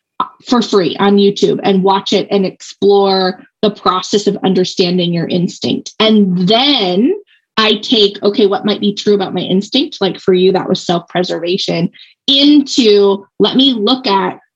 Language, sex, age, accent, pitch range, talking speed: English, female, 20-39, American, 190-230 Hz, 155 wpm